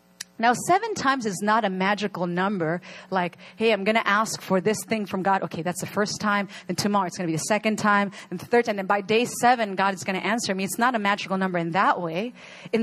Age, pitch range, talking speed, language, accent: 30-49, 170-235 Hz, 260 wpm, English, American